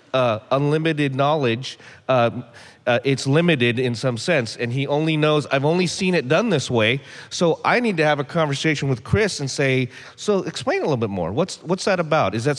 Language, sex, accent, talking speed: English, male, American, 210 wpm